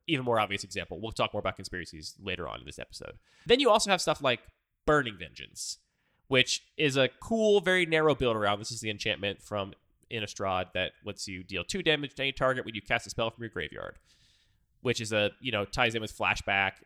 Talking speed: 220 wpm